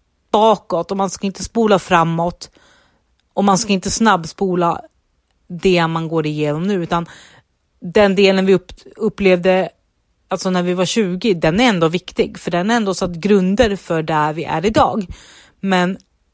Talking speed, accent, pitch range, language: 160 wpm, native, 165-200 Hz, Swedish